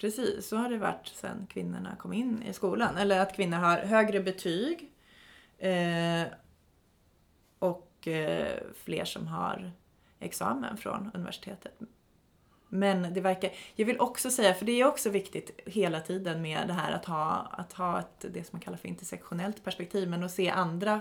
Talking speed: 170 wpm